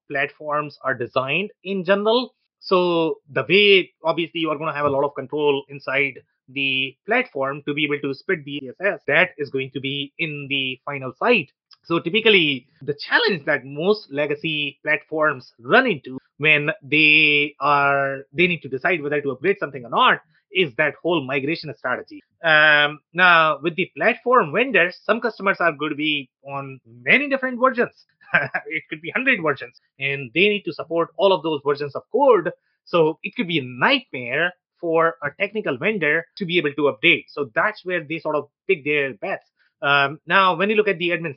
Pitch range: 145-195 Hz